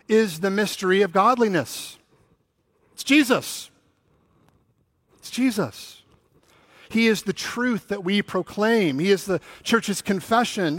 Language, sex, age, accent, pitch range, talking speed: English, male, 50-69, American, 135-190 Hz, 115 wpm